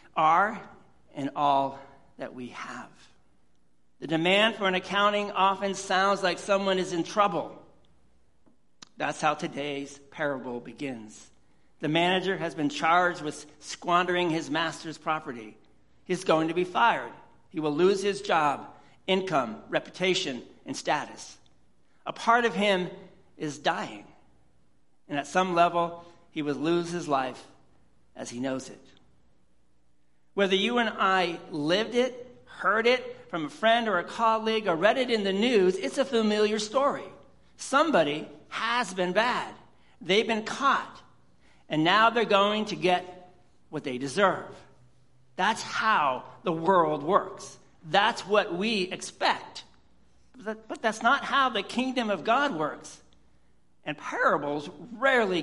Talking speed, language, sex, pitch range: 135 wpm, English, male, 140-200 Hz